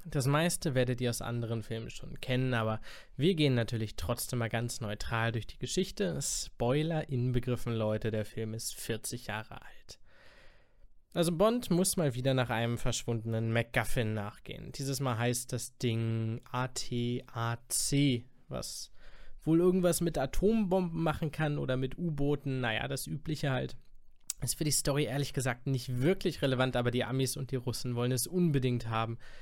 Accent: German